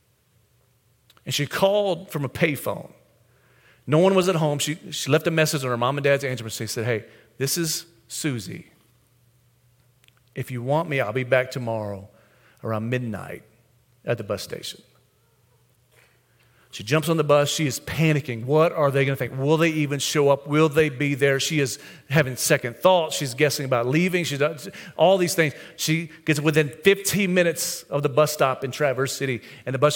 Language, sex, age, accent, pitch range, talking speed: English, male, 40-59, American, 130-190 Hz, 190 wpm